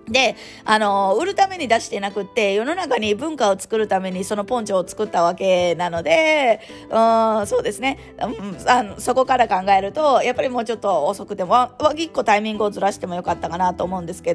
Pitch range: 195-255 Hz